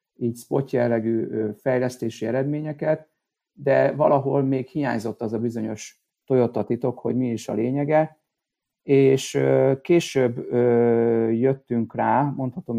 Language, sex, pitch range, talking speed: Hungarian, male, 115-135 Hz, 105 wpm